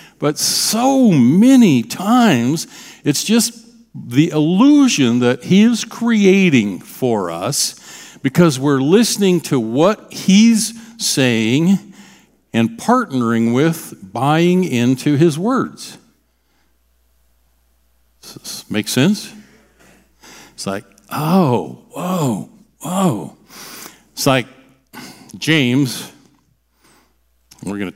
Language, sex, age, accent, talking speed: English, male, 60-79, American, 95 wpm